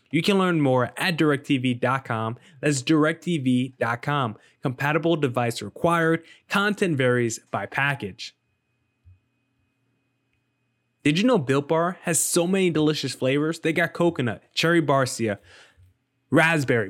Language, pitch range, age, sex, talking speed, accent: English, 130-165 Hz, 20-39, male, 110 wpm, American